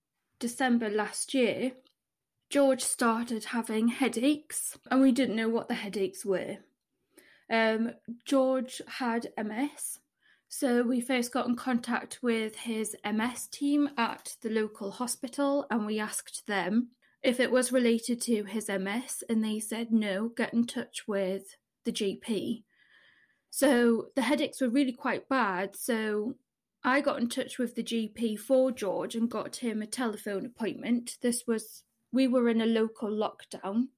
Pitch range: 215-250 Hz